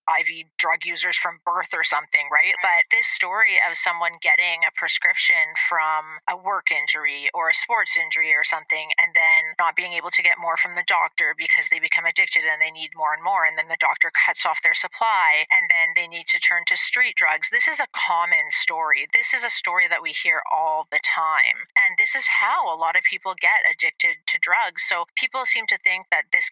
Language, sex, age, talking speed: English, female, 30-49, 220 wpm